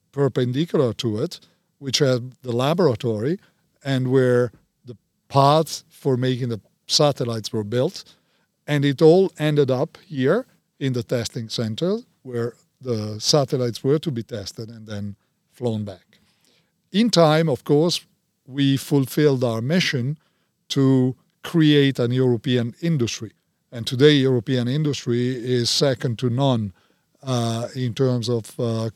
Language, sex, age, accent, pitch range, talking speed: English, male, 50-69, Italian, 120-155 Hz, 135 wpm